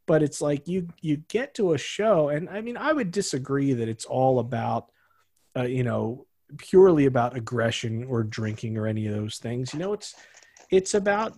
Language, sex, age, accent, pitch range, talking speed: English, male, 40-59, American, 120-160 Hz, 195 wpm